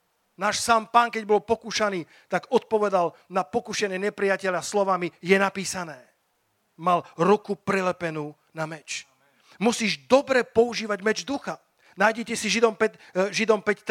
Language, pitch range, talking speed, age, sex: Slovak, 190-225 Hz, 115 wpm, 40-59, male